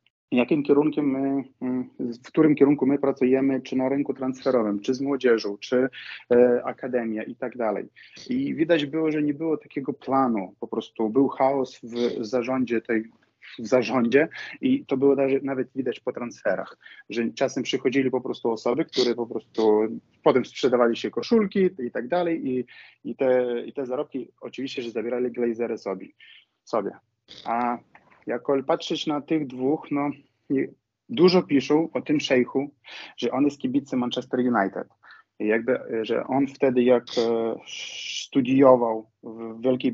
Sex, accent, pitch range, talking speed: male, native, 120-140 Hz, 150 wpm